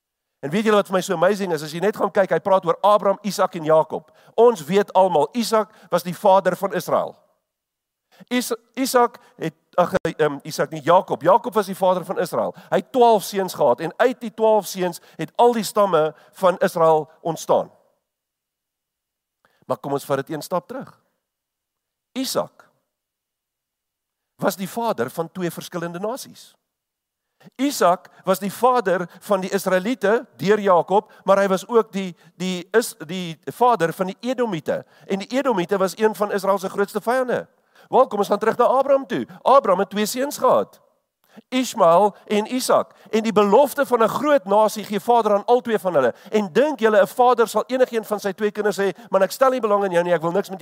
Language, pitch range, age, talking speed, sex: English, 170-225 Hz, 50-69, 190 wpm, male